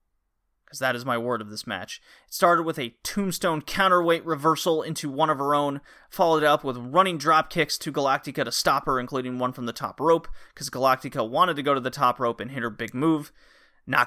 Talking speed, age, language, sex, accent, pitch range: 220 wpm, 30-49, English, male, American, 125-155 Hz